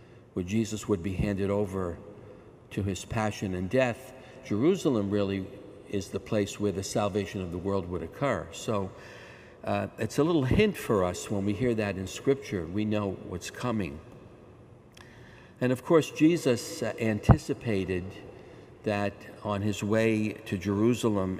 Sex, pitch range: male, 100-115 Hz